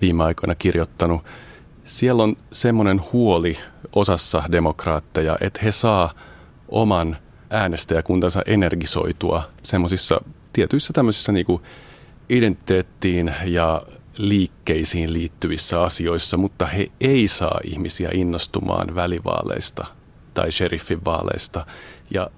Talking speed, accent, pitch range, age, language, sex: 95 wpm, native, 85-105 Hz, 30-49, Finnish, male